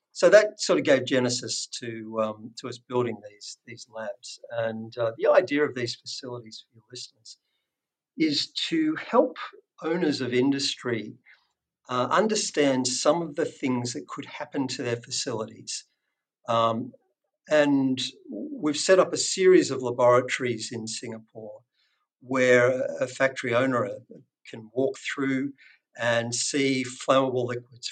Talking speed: 140 wpm